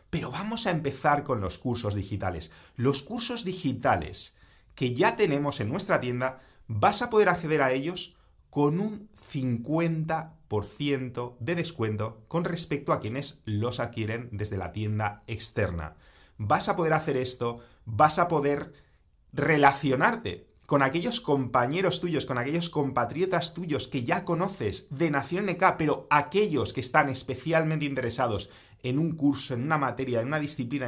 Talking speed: 150 wpm